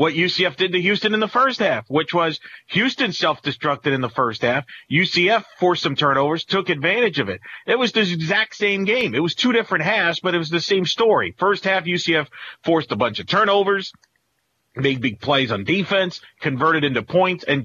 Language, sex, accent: English, male, American